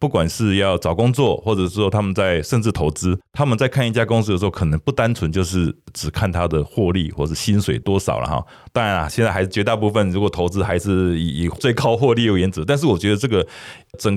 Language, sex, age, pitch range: Chinese, male, 20-39, 85-105 Hz